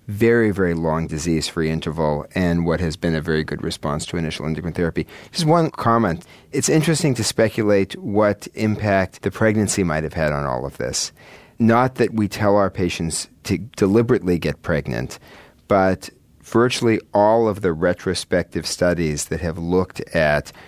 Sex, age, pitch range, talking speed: male, 40-59, 80-100 Hz, 165 wpm